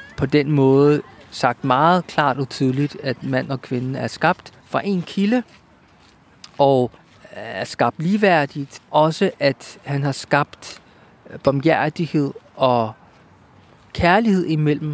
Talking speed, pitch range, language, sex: 115 wpm, 140-175 Hz, Danish, male